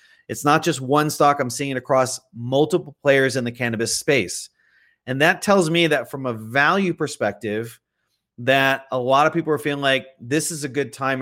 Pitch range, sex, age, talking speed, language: 125-150 Hz, male, 30-49, 200 wpm, English